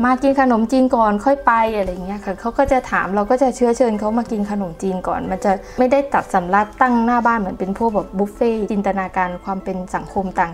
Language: Thai